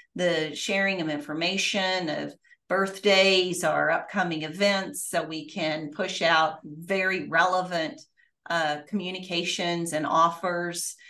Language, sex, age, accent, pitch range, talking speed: English, female, 40-59, American, 170-210 Hz, 110 wpm